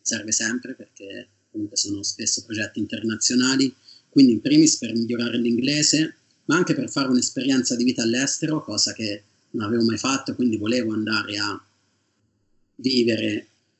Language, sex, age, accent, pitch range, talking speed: Italian, male, 30-49, native, 105-130 Hz, 145 wpm